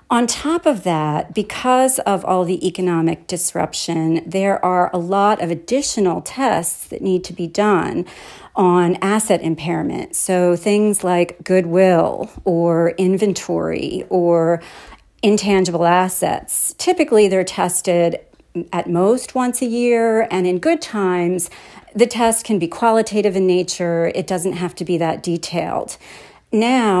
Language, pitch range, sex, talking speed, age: English, 170-205 Hz, female, 135 wpm, 40-59